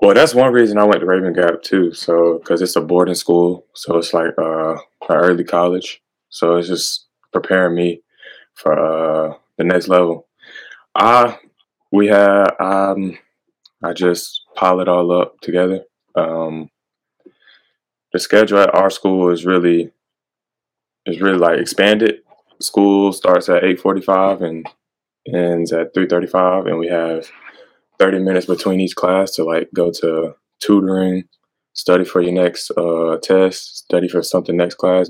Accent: American